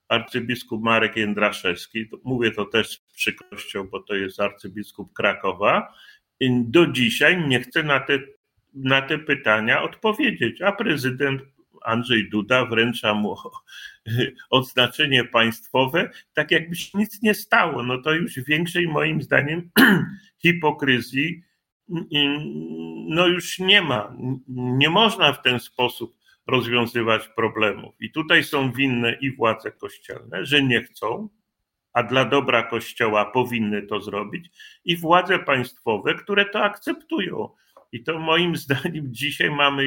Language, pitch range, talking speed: Polish, 120-160 Hz, 125 wpm